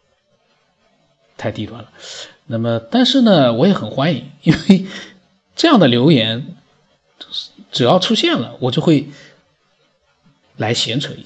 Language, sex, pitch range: Chinese, male, 120-150 Hz